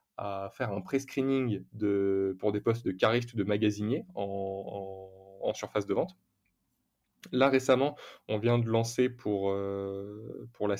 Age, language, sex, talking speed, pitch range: 20-39, French, male, 160 wpm, 100-125 Hz